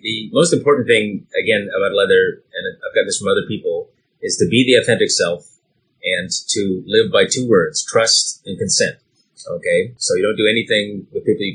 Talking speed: 195 wpm